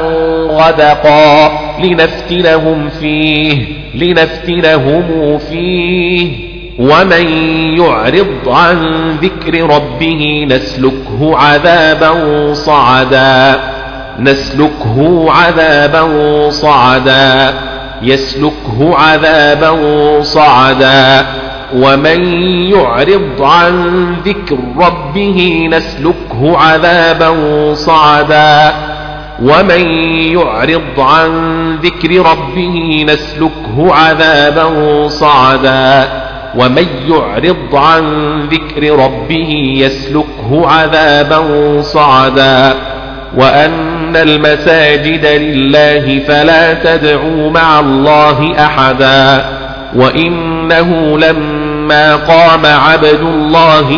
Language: Arabic